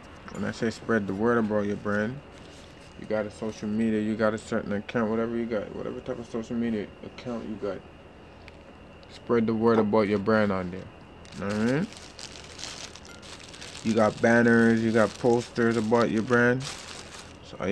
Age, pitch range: 20-39, 95-110 Hz